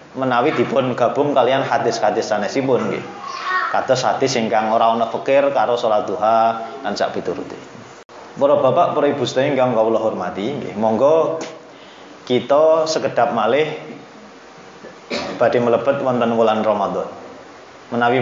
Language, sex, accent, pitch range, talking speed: Indonesian, male, native, 125-180 Hz, 120 wpm